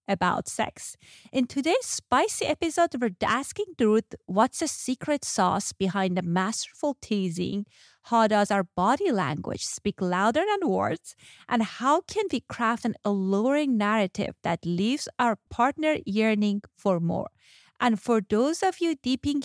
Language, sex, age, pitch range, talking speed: English, female, 30-49, 205-280 Hz, 145 wpm